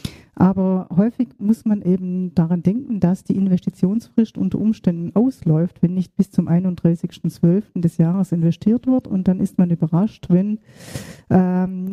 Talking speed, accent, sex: 145 wpm, German, female